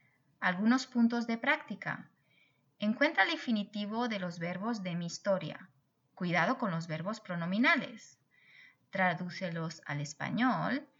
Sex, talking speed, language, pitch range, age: female, 115 wpm, Spanish, 180-250 Hz, 30-49